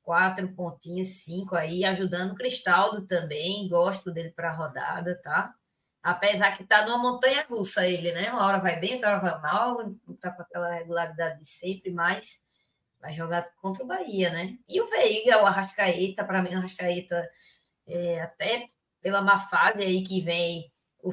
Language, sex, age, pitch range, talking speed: Portuguese, female, 20-39, 175-210 Hz, 180 wpm